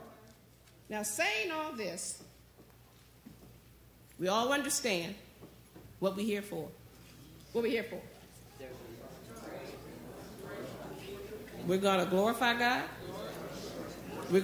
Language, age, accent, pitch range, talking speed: English, 50-69, American, 200-275 Hz, 85 wpm